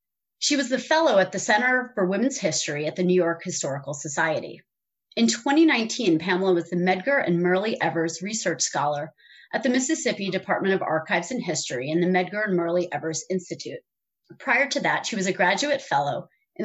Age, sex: 30-49, female